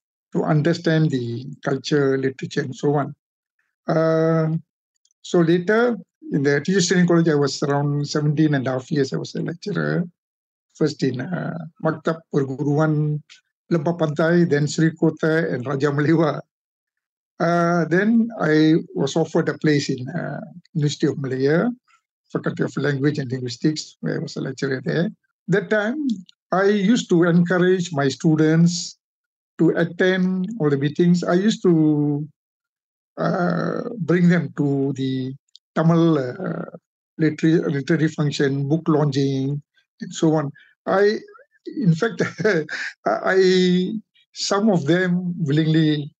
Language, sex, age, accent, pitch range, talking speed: English, male, 60-79, Indian, 150-185 Hz, 135 wpm